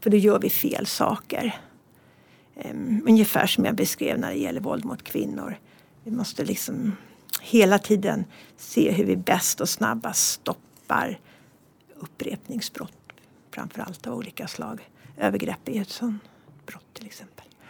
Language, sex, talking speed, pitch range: Swedish, female, 140 wpm, 200-225 Hz